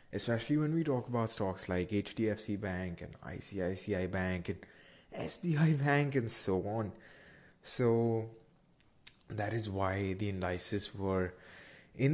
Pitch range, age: 100-130 Hz, 20-39